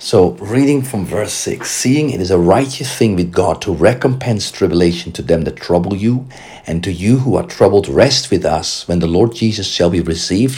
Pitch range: 85-115 Hz